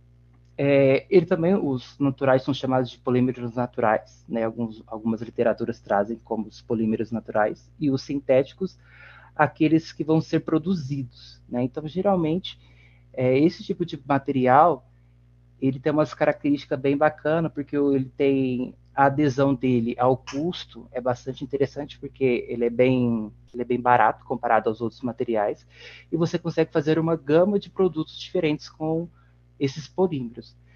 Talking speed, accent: 140 wpm, Brazilian